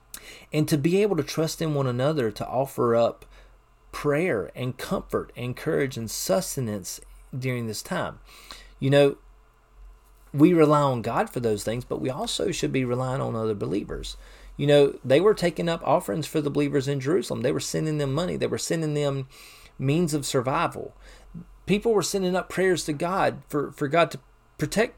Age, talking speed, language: 30-49, 185 wpm, English